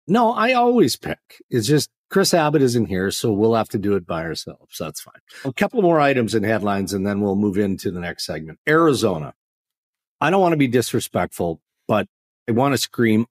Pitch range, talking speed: 105-150 Hz, 210 wpm